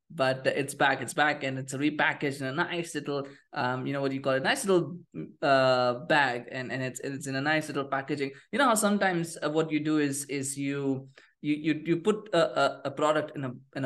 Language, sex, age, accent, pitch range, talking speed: English, male, 20-39, Indian, 135-165 Hz, 220 wpm